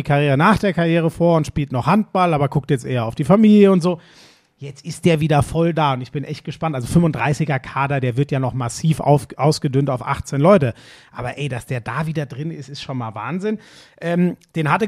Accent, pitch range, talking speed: German, 145-190 Hz, 220 wpm